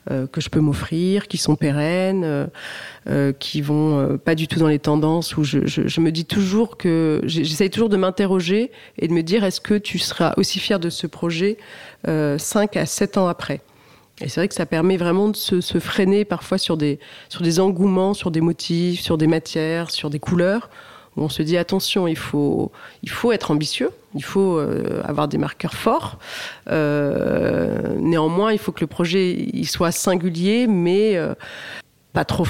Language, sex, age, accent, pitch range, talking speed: French, female, 30-49, French, 155-195 Hz, 190 wpm